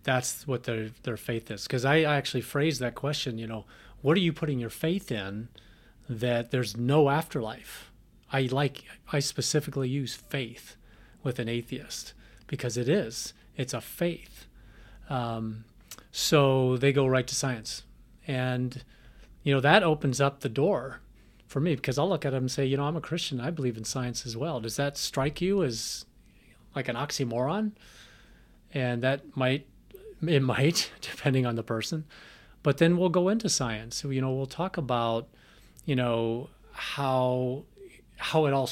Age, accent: 40-59, American